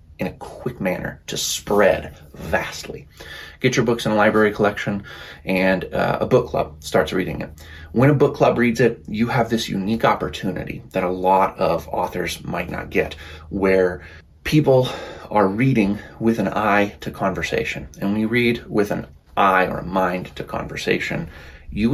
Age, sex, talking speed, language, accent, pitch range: 30-49, male, 170 wpm, English, American, 90-115 Hz